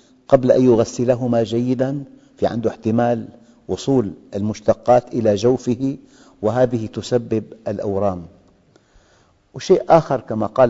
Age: 50-69